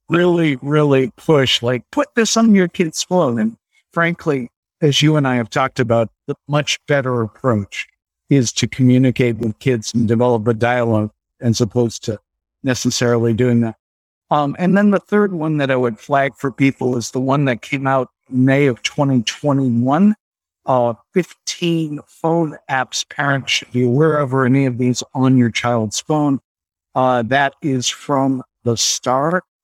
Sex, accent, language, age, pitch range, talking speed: male, American, English, 60-79, 125-155 Hz, 165 wpm